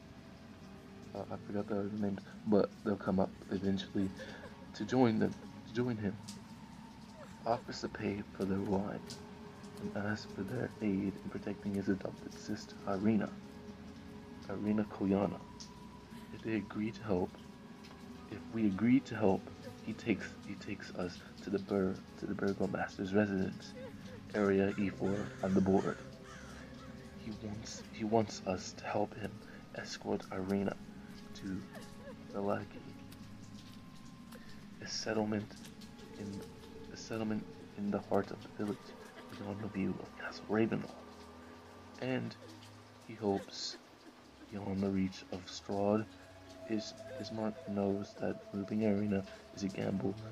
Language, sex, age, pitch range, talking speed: English, male, 20-39, 95-110 Hz, 135 wpm